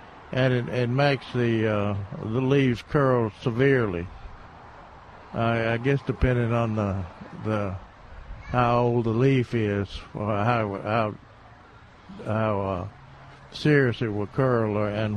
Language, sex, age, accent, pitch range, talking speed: English, male, 60-79, American, 110-135 Hz, 130 wpm